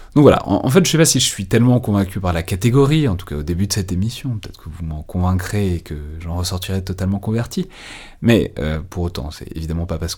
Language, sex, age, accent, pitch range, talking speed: French, male, 30-49, French, 85-105 Hz, 255 wpm